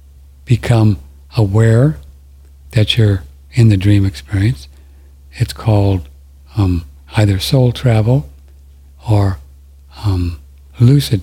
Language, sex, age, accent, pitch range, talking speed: English, male, 60-79, American, 70-110 Hz, 90 wpm